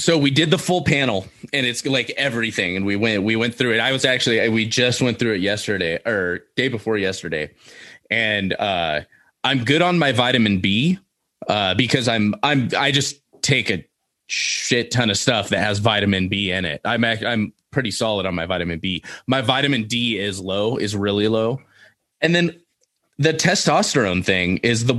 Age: 20-39